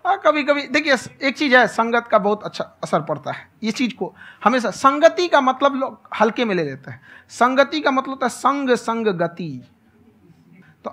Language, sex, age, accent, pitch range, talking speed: Hindi, male, 50-69, native, 205-265 Hz, 190 wpm